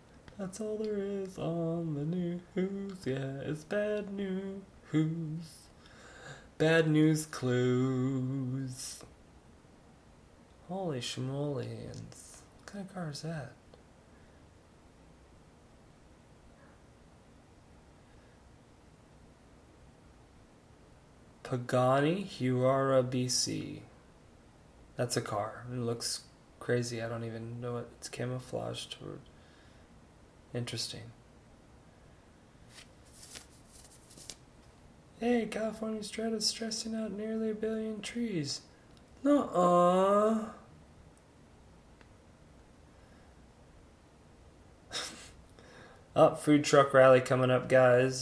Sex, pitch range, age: male, 120-175 Hz, 20-39